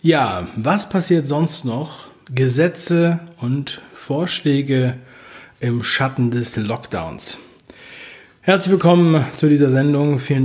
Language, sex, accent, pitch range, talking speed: German, male, German, 125-165 Hz, 105 wpm